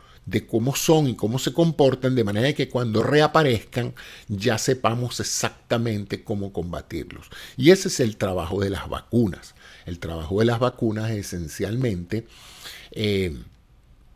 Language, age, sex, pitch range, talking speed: Spanish, 50-69, male, 100-125 Hz, 135 wpm